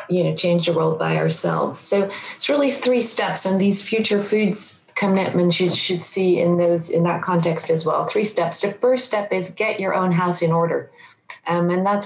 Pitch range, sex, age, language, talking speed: 165-200 Hz, female, 30-49, Dutch, 210 wpm